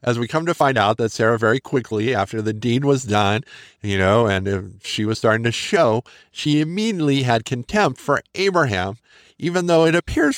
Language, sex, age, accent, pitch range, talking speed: English, male, 50-69, American, 110-150 Hz, 195 wpm